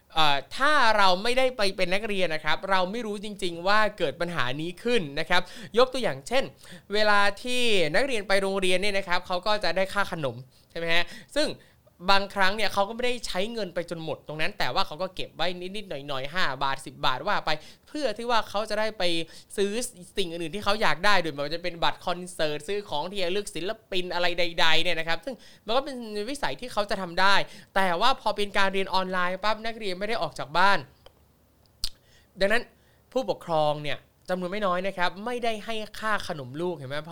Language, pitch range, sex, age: Thai, 175-210 Hz, male, 20-39